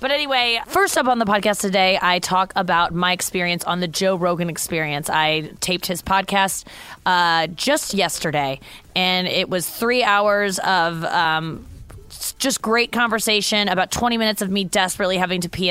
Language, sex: English, female